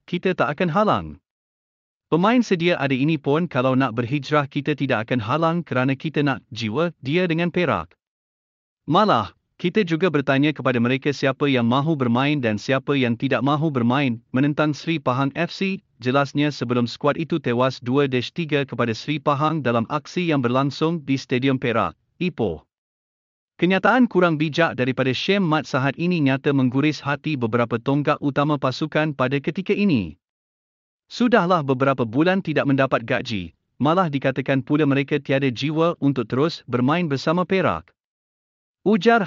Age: 50-69